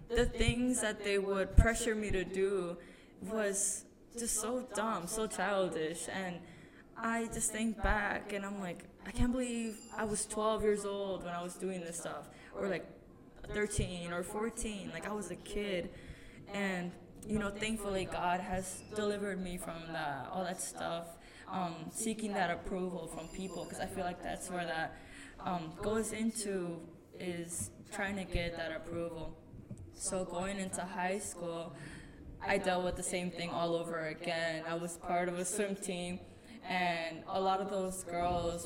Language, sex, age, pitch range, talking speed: English, female, 10-29, 170-210 Hz, 170 wpm